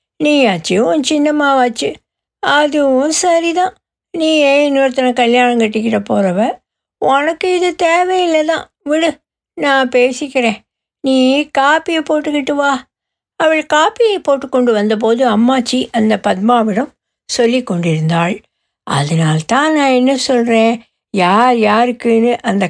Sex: female